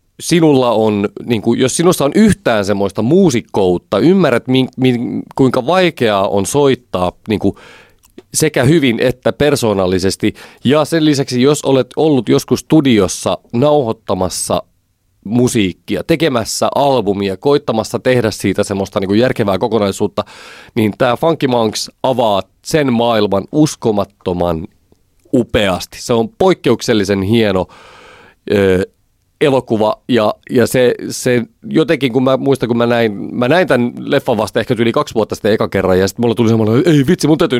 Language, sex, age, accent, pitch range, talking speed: Finnish, male, 30-49, native, 100-140 Hz, 145 wpm